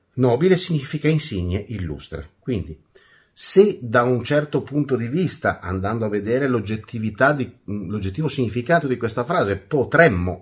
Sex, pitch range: male, 95-135 Hz